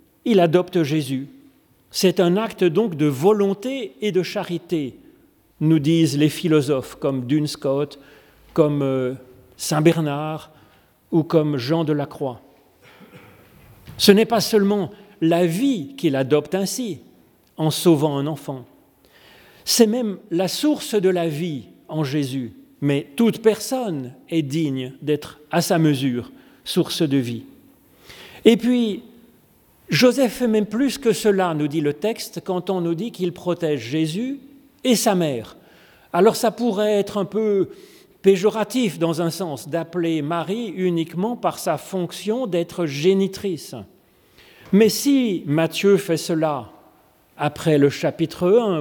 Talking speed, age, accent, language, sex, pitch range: 135 wpm, 40-59, French, French, male, 150-210 Hz